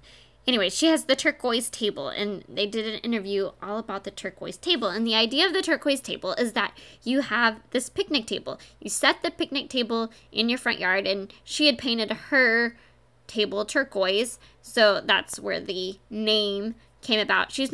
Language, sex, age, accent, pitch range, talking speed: English, female, 20-39, American, 210-270 Hz, 185 wpm